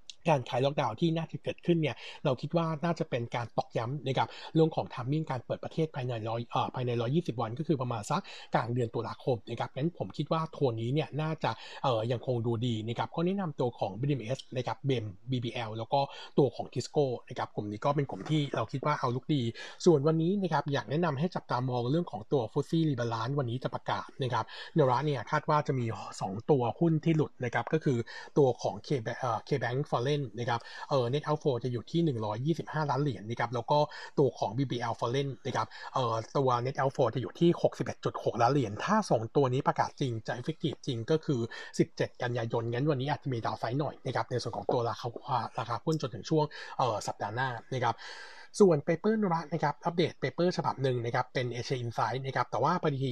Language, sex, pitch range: Thai, male, 120-155 Hz